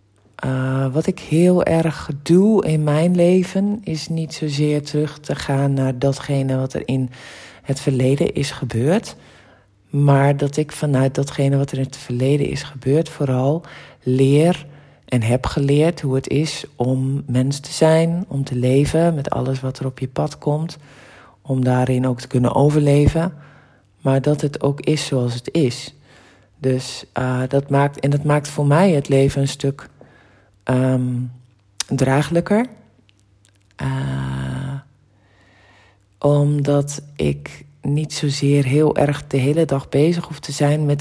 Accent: Dutch